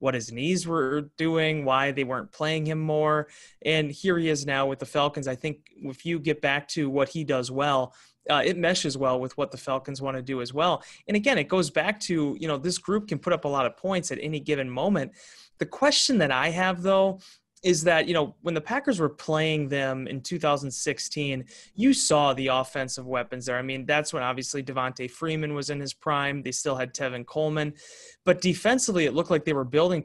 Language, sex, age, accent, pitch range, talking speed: English, male, 30-49, American, 140-180 Hz, 225 wpm